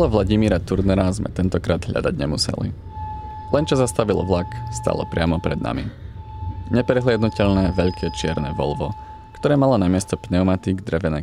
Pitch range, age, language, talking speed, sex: 85-110 Hz, 20-39, Czech, 130 wpm, male